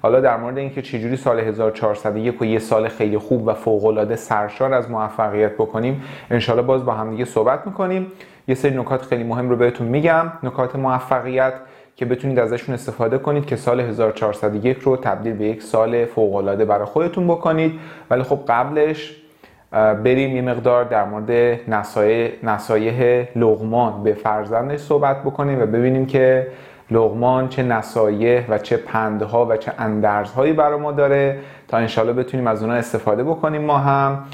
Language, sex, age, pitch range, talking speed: Persian, male, 30-49, 110-135 Hz, 160 wpm